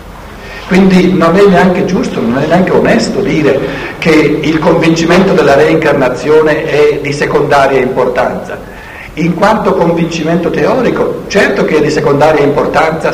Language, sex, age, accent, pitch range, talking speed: Italian, male, 60-79, native, 130-185 Hz, 130 wpm